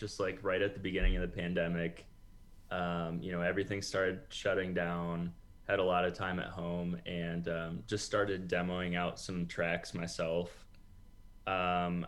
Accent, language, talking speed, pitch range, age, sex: American, English, 165 wpm, 85-95 Hz, 20-39, male